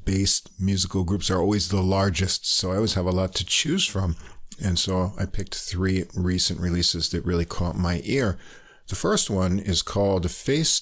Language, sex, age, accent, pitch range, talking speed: English, male, 50-69, American, 90-110 Hz, 190 wpm